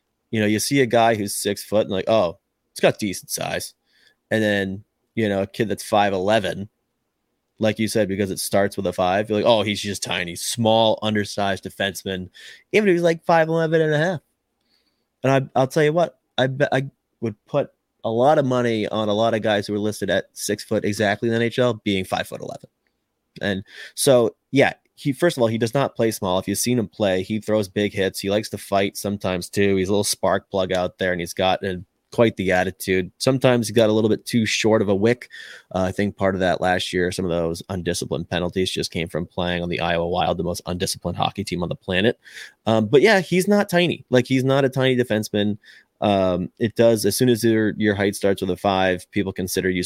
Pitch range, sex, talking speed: 95-115 Hz, male, 235 wpm